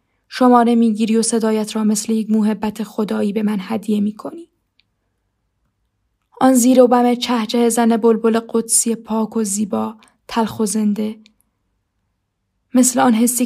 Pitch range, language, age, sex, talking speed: 210-230 Hz, Persian, 10-29, female, 140 wpm